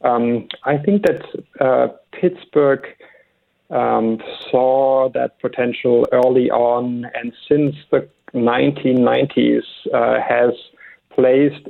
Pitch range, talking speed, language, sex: 120-150 Hz, 95 wpm, English, male